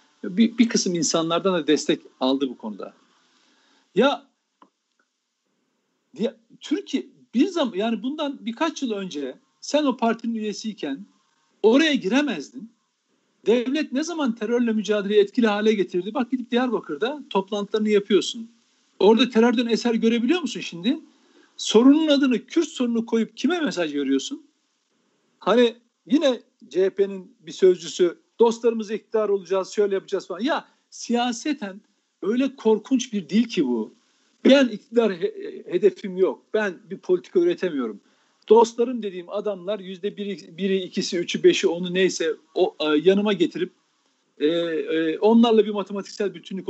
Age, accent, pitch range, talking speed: 60-79, native, 200-275 Hz, 130 wpm